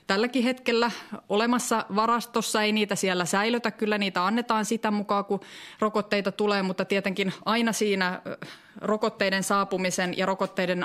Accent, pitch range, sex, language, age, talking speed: native, 180-215 Hz, female, Finnish, 30-49, 135 wpm